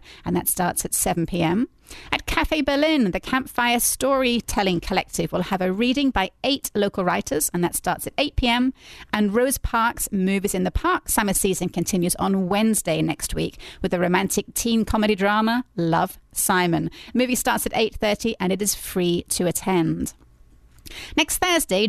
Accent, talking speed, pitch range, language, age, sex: British, 160 wpm, 185-250 Hz, English, 30-49, female